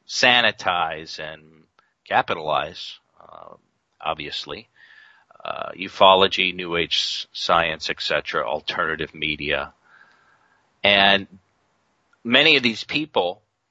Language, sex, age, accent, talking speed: English, male, 40-59, American, 80 wpm